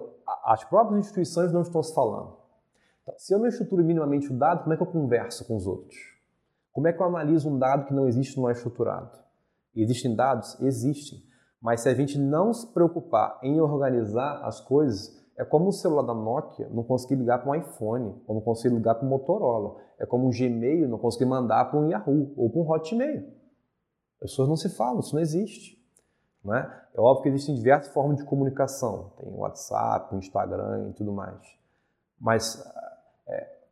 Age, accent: 20-39, Brazilian